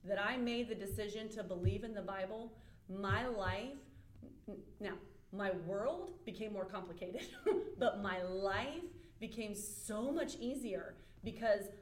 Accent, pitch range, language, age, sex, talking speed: American, 195-235 Hz, English, 30-49, female, 130 wpm